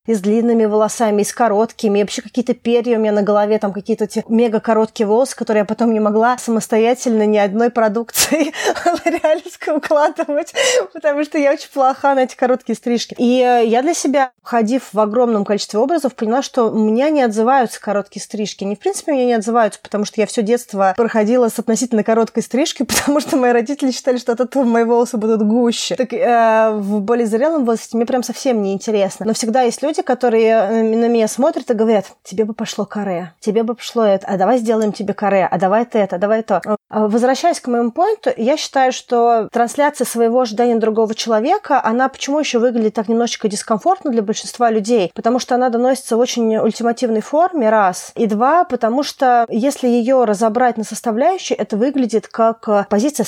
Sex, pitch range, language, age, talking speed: female, 210-250 Hz, Russian, 20-39, 190 wpm